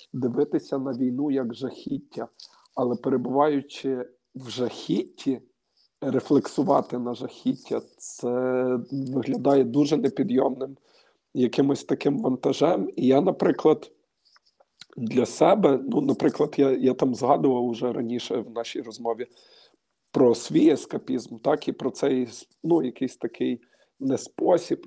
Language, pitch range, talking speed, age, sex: Ukrainian, 125-145 Hz, 110 wpm, 50-69, male